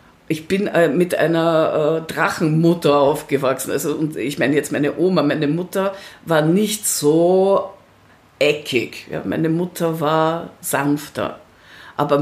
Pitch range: 145-180 Hz